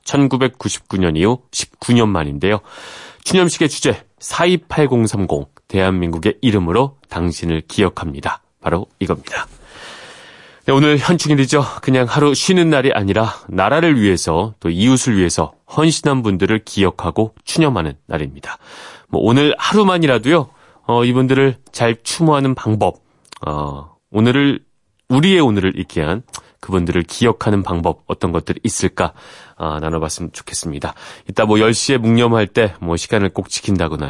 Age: 30-49